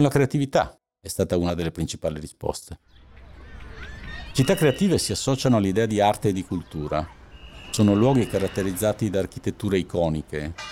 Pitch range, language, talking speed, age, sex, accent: 85-120 Hz, Italian, 135 wpm, 50-69, male, native